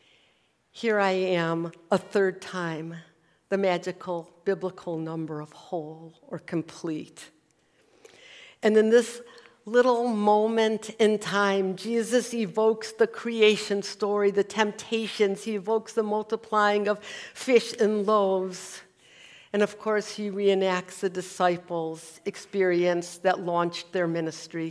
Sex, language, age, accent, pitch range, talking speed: female, English, 60-79, American, 180-220 Hz, 115 wpm